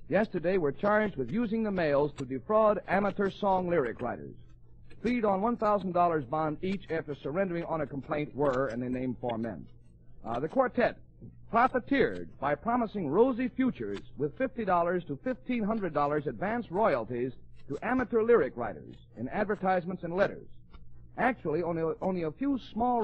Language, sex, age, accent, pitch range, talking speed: English, male, 50-69, American, 135-210 Hz, 150 wpm